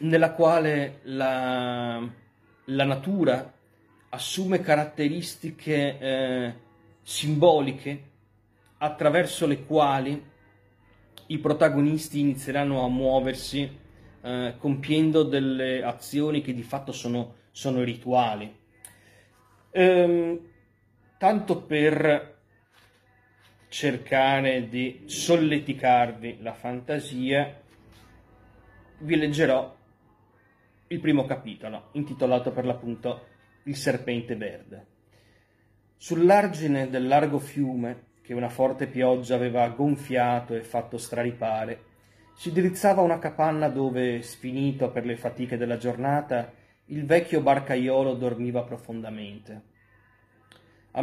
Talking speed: 90 wpm